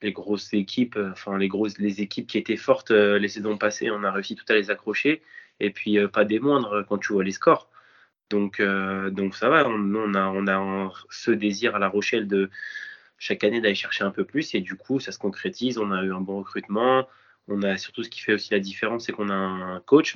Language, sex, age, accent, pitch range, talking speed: French, male, 20-39, French, 100-110 Hz, 225 wpm